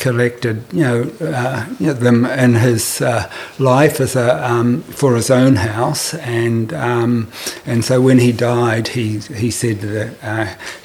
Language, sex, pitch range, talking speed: English, male, 110-130 Hz, 155 wpm